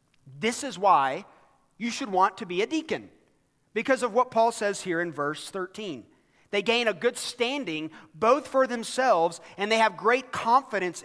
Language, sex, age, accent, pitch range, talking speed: English, male, 40-59, American, 145-205 Hz, 175 wpm